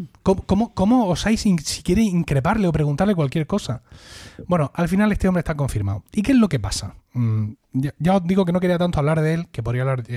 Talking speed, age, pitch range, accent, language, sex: 250 wpm, 30-49, 115-170 Hz, Spanish, Spanish, male